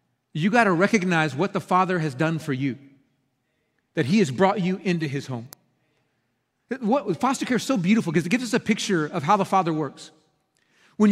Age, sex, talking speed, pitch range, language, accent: 30-49, male, 190 wpm, 160-235 Hz, English, American